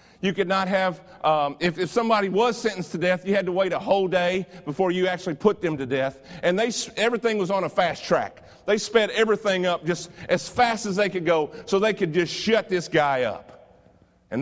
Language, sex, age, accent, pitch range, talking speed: English, male, 50-69, American, 165-205 Hz, 225 wpm